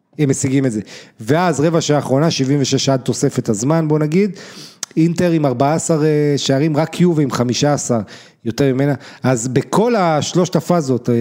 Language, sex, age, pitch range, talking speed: Hebrew, male, 30-49, 125-160 Hz, 145 wpm